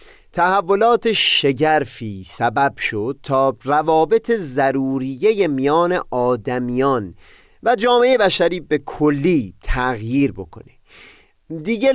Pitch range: 125-175 Hz